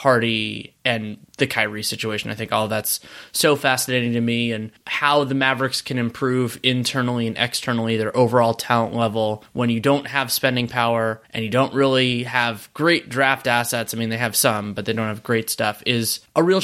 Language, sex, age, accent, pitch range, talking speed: English, male, 20-39, American, 120-145 Hz, 195 wpm